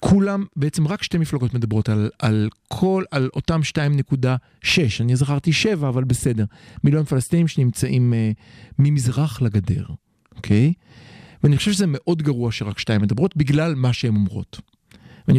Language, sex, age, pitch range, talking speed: Hebrew, male, 50-69, 115-165 Hz, 150 wpm